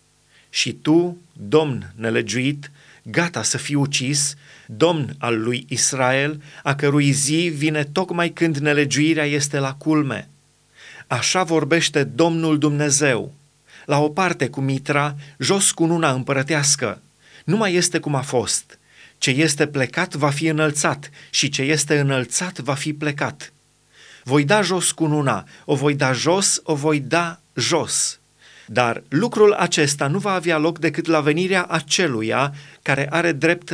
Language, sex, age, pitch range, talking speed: Romanian, male, 30-49, 140-165 Hz, 140 wpm